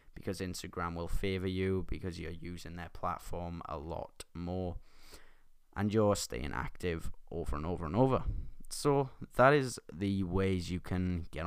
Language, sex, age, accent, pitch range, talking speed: English, male, 20-39, British, 85-100 Hz, 155 wpm